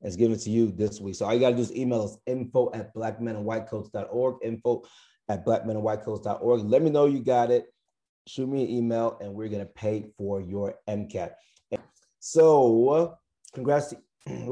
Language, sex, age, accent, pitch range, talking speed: English, male, 30-49, American, 105-125 Hz, 175 wpm